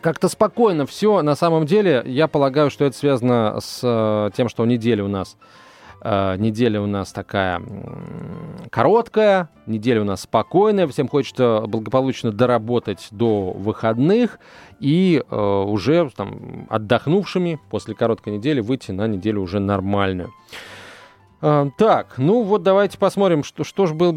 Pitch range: 115-165 Hz